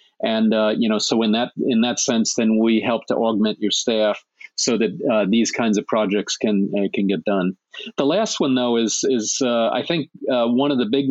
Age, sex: 40-59, male